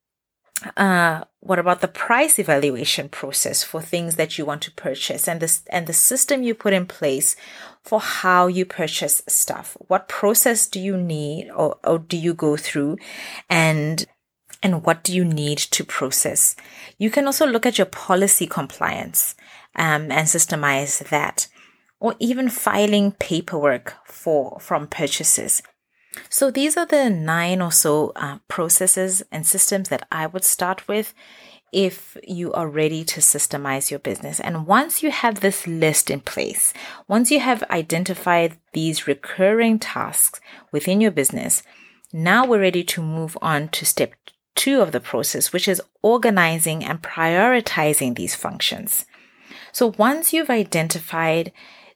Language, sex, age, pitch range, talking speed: English, female, 20-39, 160-215 Hz, 150 wpm